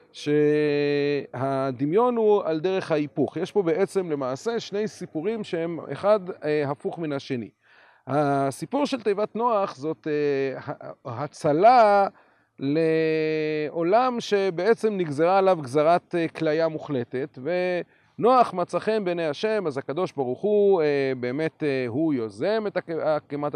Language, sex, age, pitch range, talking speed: Hebrew, male, 40-59, 140-190 Hz, 110 wpm